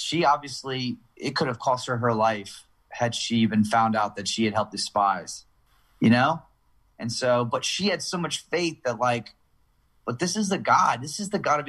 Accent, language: American, English